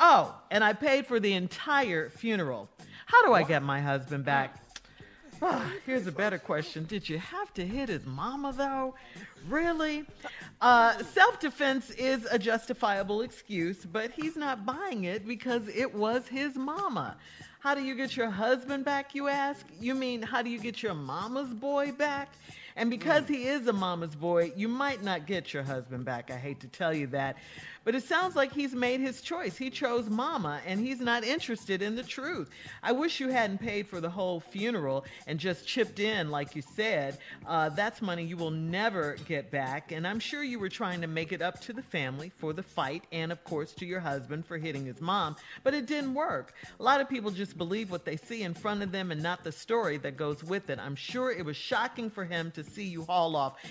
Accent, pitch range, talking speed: American, 165-255 Hz, 210 wpm